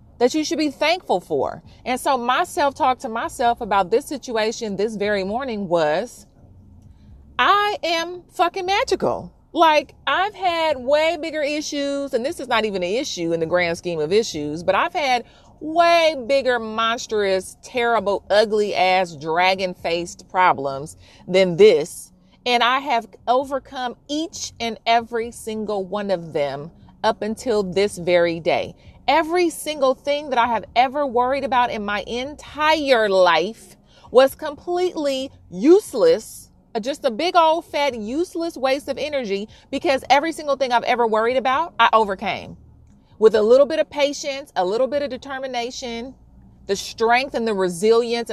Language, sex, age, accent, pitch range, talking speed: English, female, 30-49, American, 205-290 Hz, 155 wpm